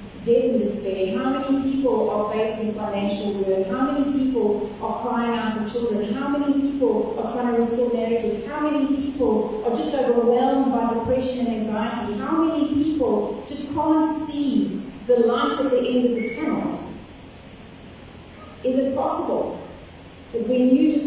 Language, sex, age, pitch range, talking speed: English, female, 30-49, 220-260 Hz, 160 wpm